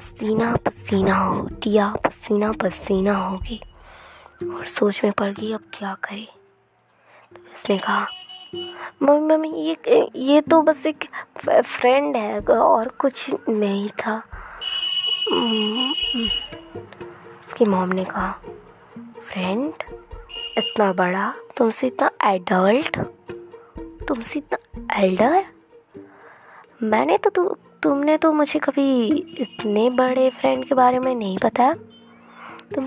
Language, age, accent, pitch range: Bengali, 20-39, native, 210-285 Hz